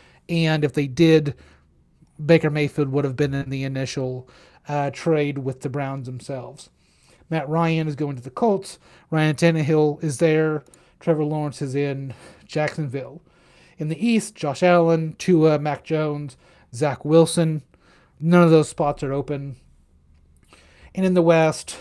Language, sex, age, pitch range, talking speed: English, male, 30-49, 140-170 Hz, 150 wpm